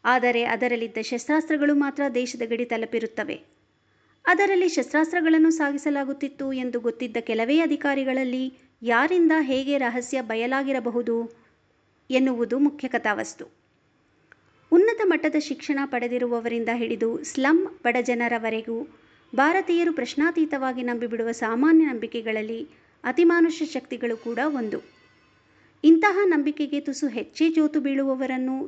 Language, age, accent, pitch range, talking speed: Kannada, 50-69, native, 235-310 Hz, 90 wpm